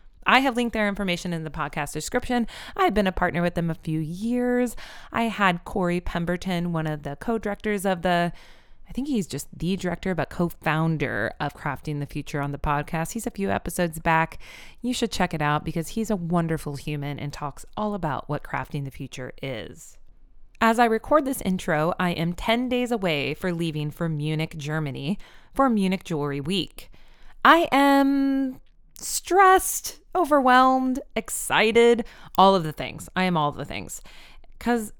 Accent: American